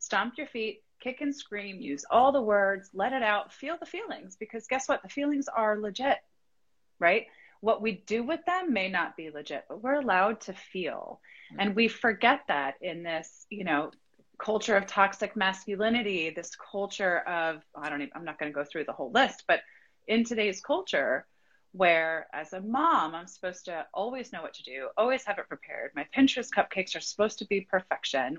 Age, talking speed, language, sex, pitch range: 30-49, 195 wpm, English, female, 175-245 Hz